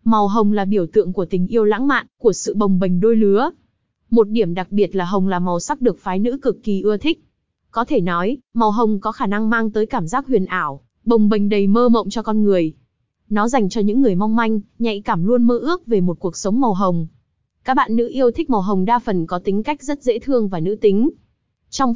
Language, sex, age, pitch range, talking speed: Vietnamese, female, 20-39, 195-240 Hz, 250 wpm